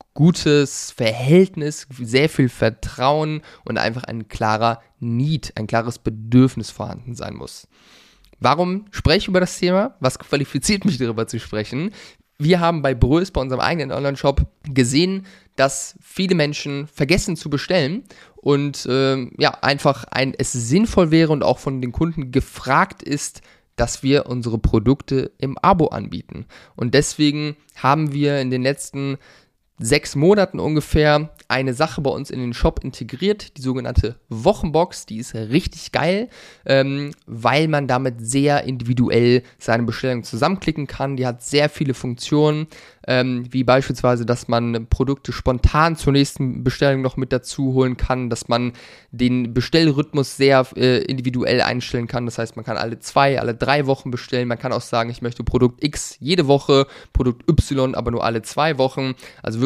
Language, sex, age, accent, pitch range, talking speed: German, male, 20-39, German, 120-150 Hz, 160 wpm